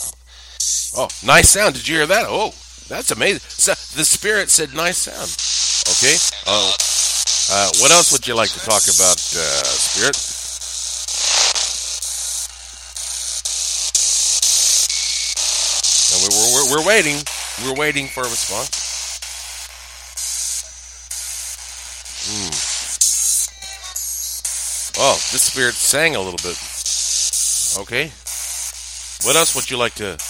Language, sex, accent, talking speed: English, male, American, 110 wpm